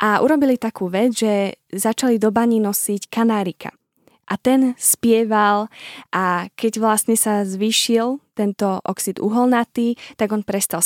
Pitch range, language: 200-235 Hz, Slovak